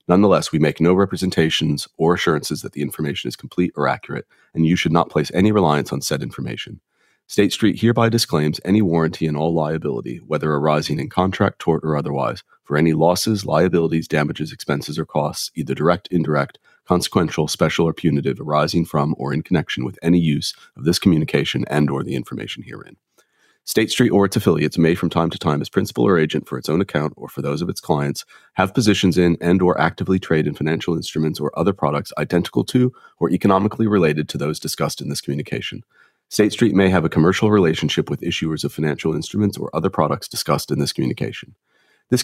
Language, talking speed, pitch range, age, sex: English, 195 wpm, 75-95 Hz, 40-59, male